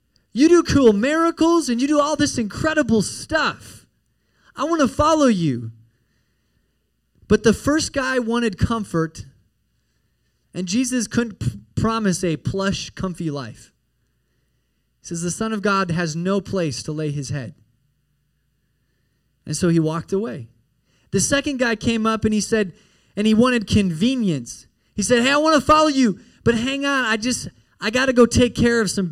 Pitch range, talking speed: 150-225 Hz, 165 wpm